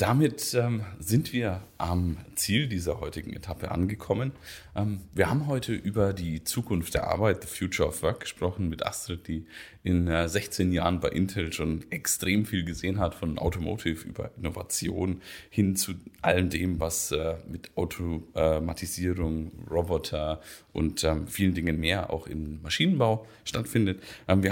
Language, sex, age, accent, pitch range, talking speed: German, male, 30-49, German, 85-110 Hz, 135 wpm